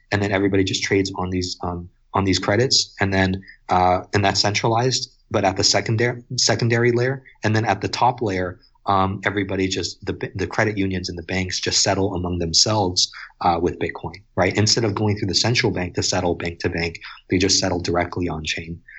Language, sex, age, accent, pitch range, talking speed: English, male, 30-49, American, 90-110 Hz, 205 wpm